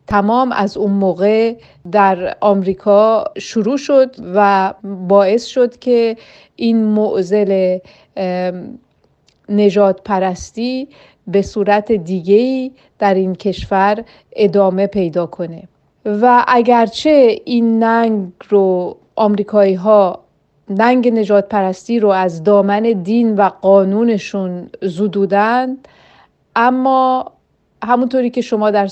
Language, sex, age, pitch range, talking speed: Persian, female, 40-59, 195-235 Hz, 95 wpm